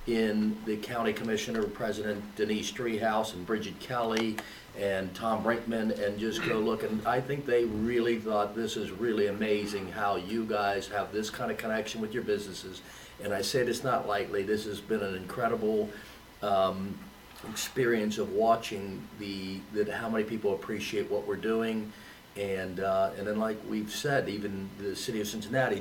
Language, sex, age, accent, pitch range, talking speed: English, male, 50-69, American, 100-115 Hz, 170 wpm